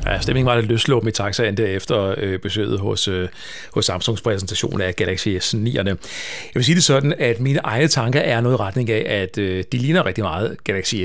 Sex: male